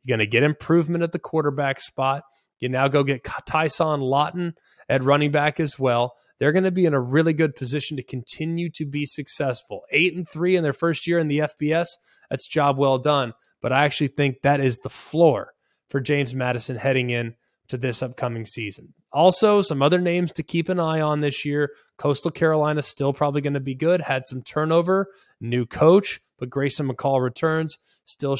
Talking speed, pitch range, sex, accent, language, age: 195 wpm, 135-160 Hz, male, American, English, 20-39